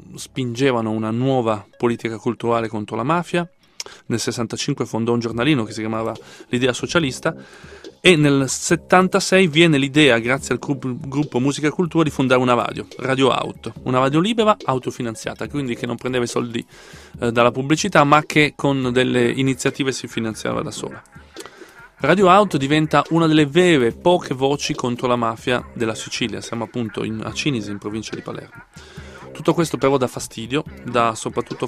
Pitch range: 115-140 Hz